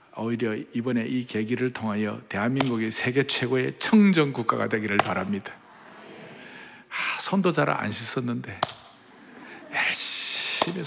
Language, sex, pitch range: Korean, male, 120-150 Hz